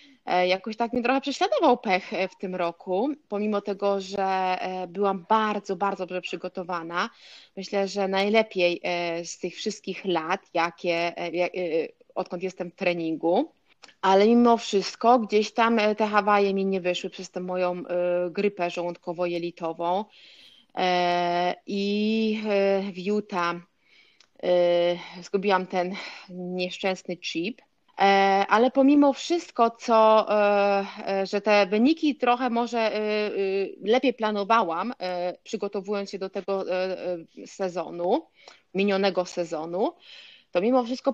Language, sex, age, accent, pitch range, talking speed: Polish, female, 30-49, native, 180-230 Hz, 105 wpm